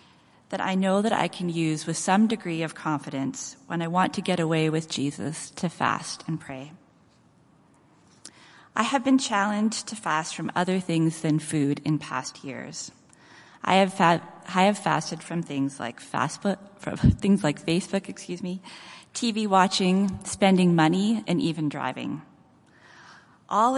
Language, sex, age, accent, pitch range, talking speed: English, female, 30-49, American, 155-200 Hz, 150 wpm